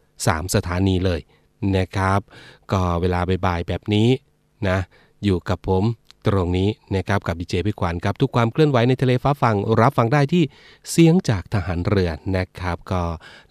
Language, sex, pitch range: Thai, male, 95-115 Hz